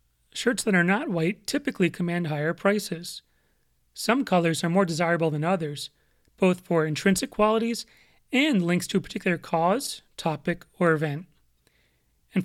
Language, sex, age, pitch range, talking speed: English, male, 30-49, 165-210 Hz, 145 wpm